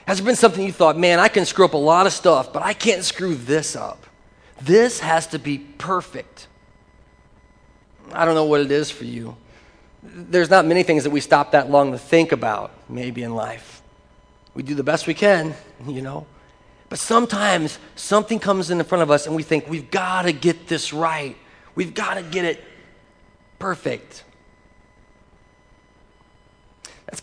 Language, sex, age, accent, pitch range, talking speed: English, male, 40-59, American, 155-200 Hz, 180 wpm